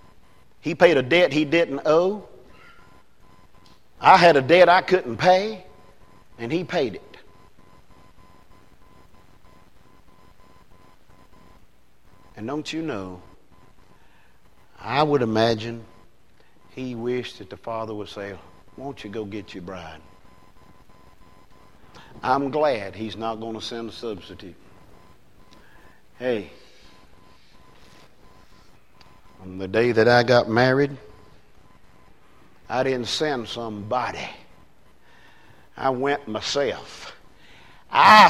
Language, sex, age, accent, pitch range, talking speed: English, male, 50-69, American, 105-170 Hz, 100 wpm